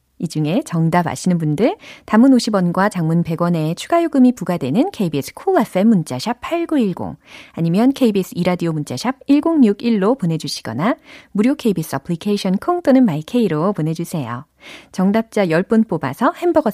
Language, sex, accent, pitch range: Korean, female, native, 165-250 Hz